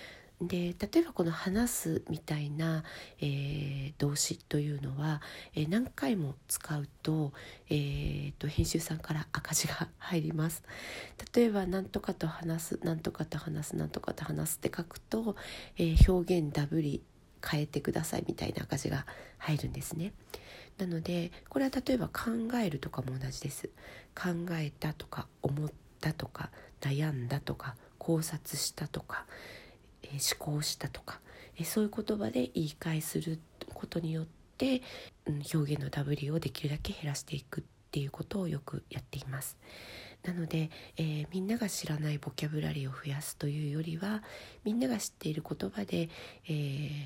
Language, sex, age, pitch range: Japanese, female, 40-59, 145-175 Hz